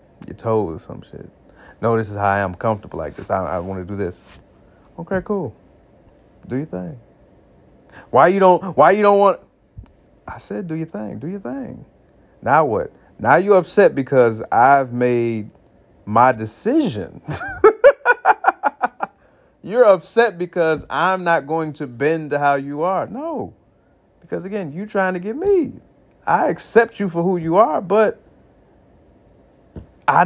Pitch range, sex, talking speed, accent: 125-195 Hz, male, 155 wpm, American